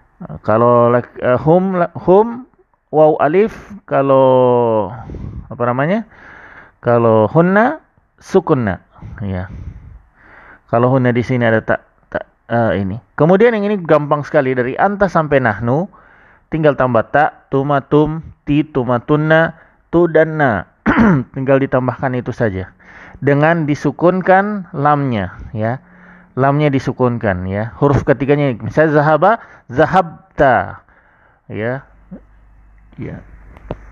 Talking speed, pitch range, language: 105 wpm, 110-150 Hz, Indonesian